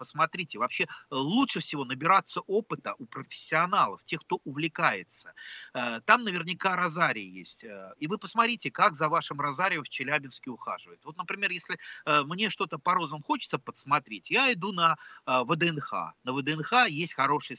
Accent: native